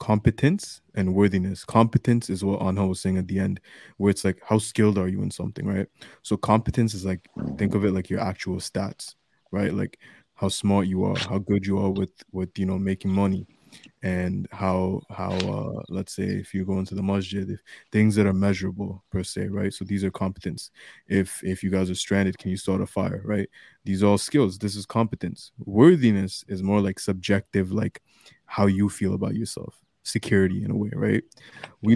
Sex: male